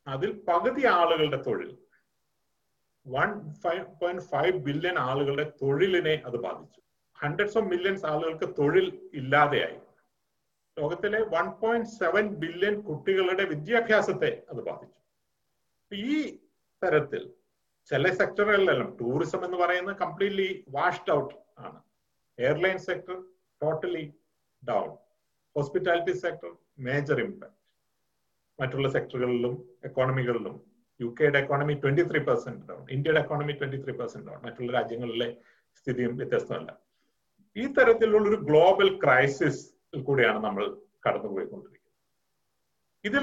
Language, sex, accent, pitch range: Malayalam, male, native, 145-210 Hz